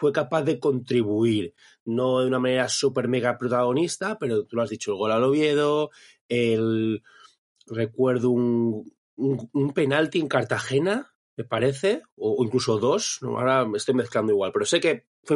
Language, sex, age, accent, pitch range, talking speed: Spanish, male, 30-49, Spanish, 120-145 Hz, 170 wpm